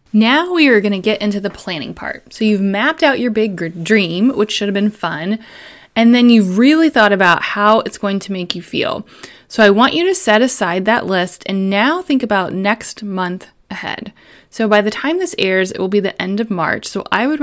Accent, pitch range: American, 185-235 Hz